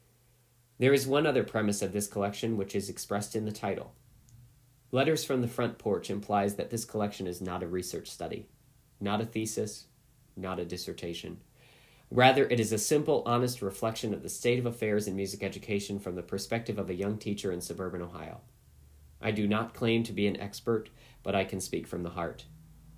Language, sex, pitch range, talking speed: English, male, 100-130 Hz, 195 wpm